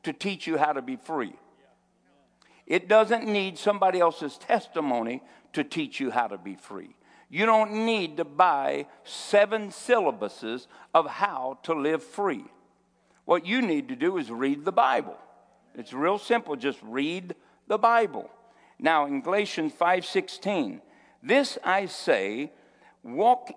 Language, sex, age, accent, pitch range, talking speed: English, male, 60-79, American, 130-215 Hz, 145 wpm